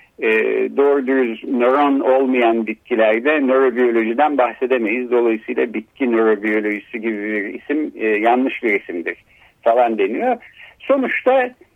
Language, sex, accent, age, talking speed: Turkish, male, native, 60-79, 100 wpm